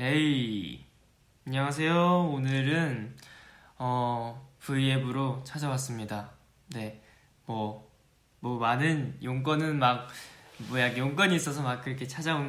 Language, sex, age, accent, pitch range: Korean, male, 20-39, native, 115-140 Hz